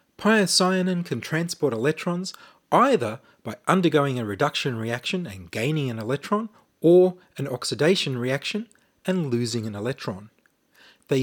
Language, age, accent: English, 30-49, Australian